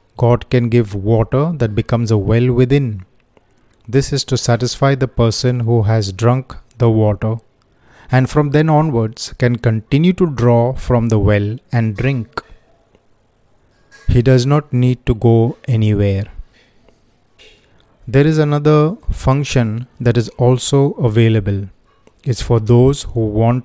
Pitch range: 110-125 Hz